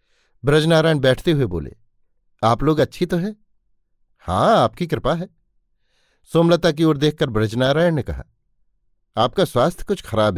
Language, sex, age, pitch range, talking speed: Hindi, male, 50-69, 115-160 Hz, 140 wpm